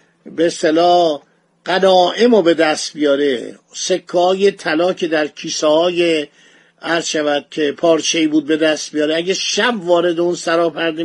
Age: 50-69